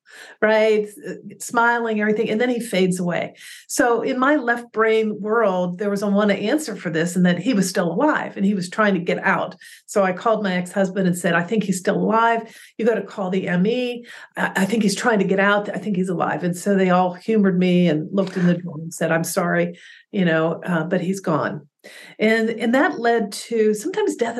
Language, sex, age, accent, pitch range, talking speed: English, female, 50-69, American, 175-220 Hz, 225 wpm